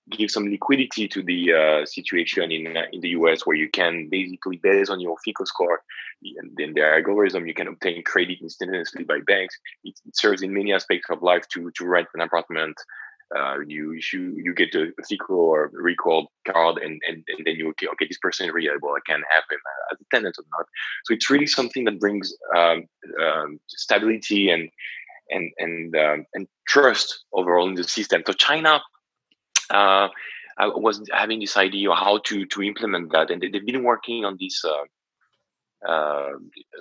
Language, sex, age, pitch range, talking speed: English, male, 20-39, 80-100 Hz, 190 wpm